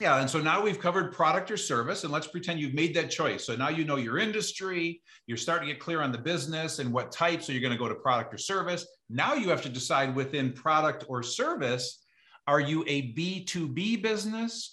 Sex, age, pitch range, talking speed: male, 50-69, 135-180 Hz, 230 wpm